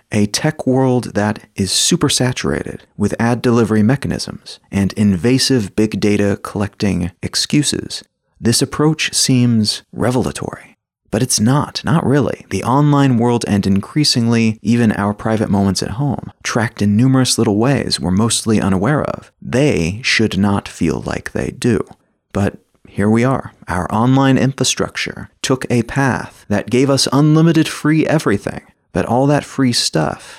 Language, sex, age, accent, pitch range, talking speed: English, male, 30-49, American, 100-130 Hz, 145 wpm